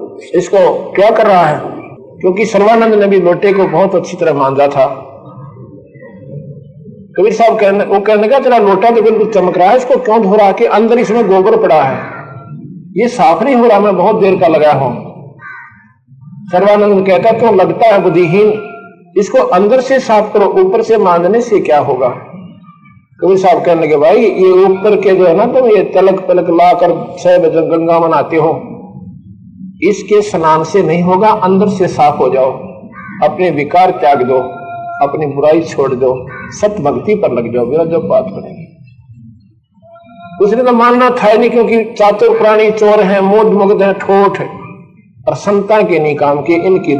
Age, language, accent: 50-69, Hindi, native